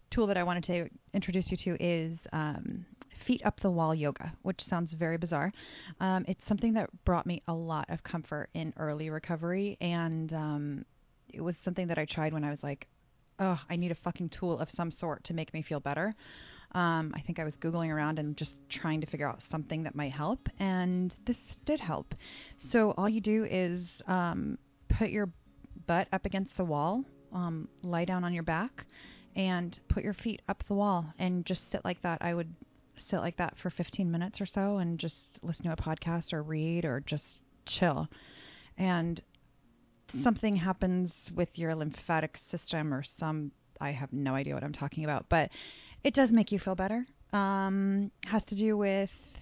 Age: 20-39